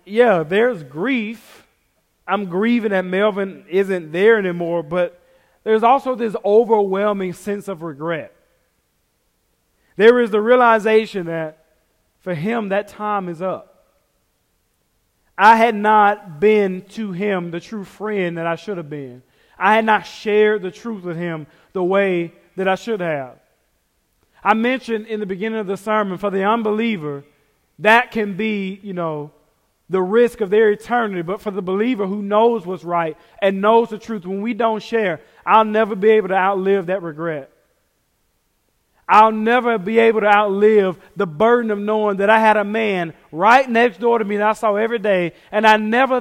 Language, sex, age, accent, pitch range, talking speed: English, male, 30-49, American, 175-220 Hz, 170 wpm